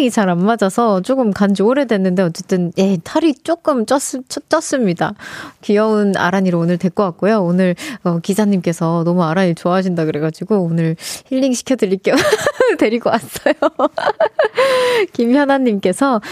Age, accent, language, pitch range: 20-39, native, Korean, 190-280 Hz